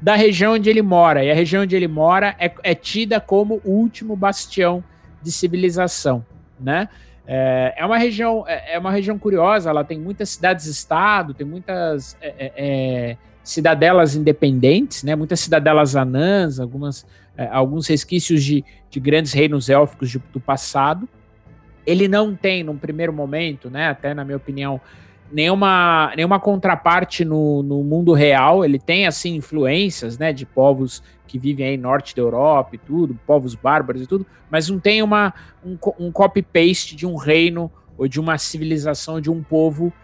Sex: male